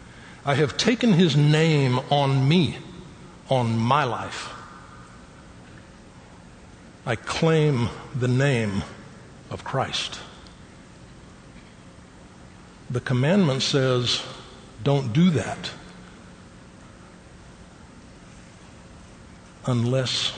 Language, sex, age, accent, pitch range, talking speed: English, male, 60-79, American, 120-160 Hz, 70 wpm